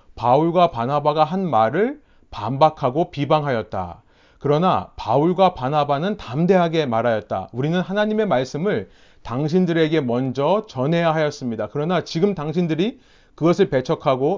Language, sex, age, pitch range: Korean, male, 30-49, 140-185 Hz